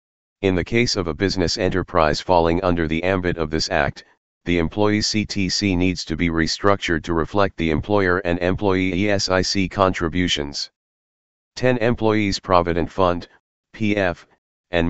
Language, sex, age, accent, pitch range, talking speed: English, male, 40-59, American, 85-100 Hz, 140 wpm